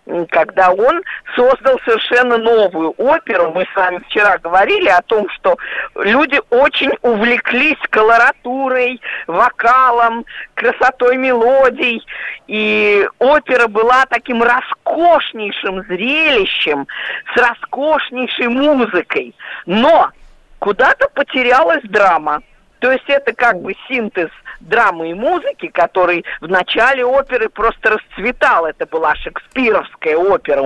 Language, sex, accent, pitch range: Russian, female, native, 195-290 Hz